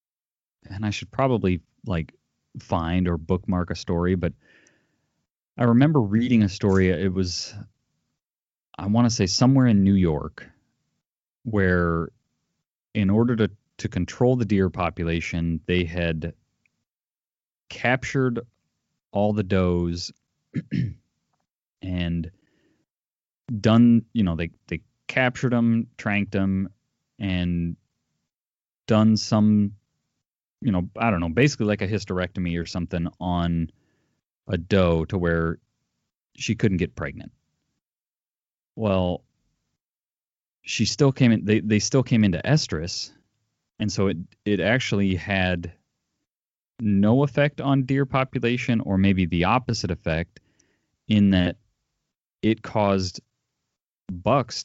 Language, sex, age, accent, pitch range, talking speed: English, male, 30-49, American, 85-110 Hz, 115 wpm